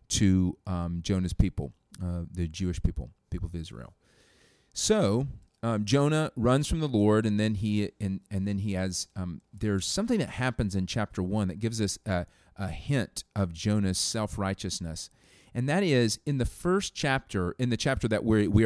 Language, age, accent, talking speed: English, 40-59, American, 180 wpm